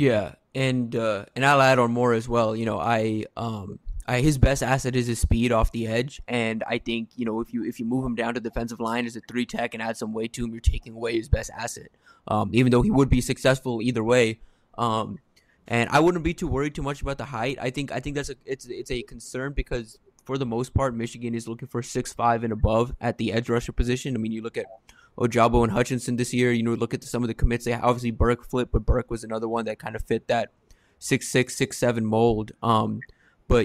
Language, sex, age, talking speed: English, male, 20-39, 260 wpm